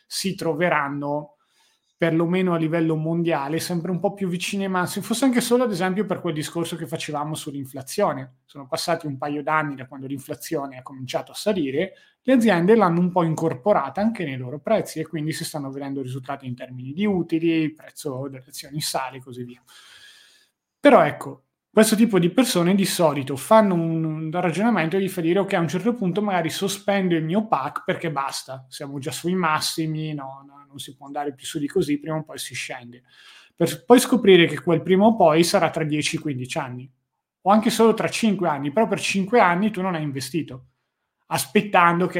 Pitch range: 145-185 Hz